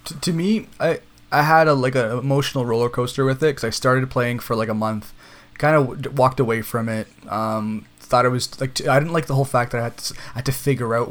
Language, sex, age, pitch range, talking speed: English, male, 20-39, 115-135 Hz, 265 wpm